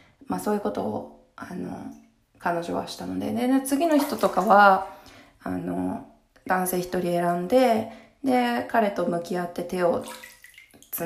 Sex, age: female, 20-39